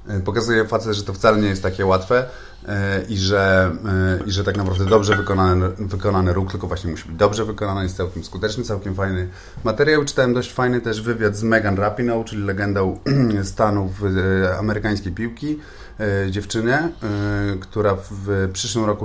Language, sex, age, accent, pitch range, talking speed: Polish, male, 30-49, native, 90-105 Hz, 155 wpm